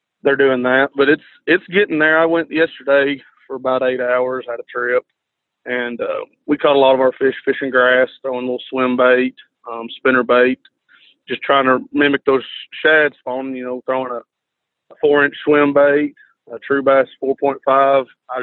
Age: 30-49